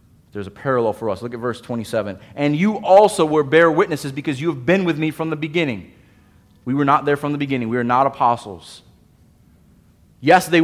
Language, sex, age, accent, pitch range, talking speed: English, male, 30-49, American, 105-155 Hz, 210 wpm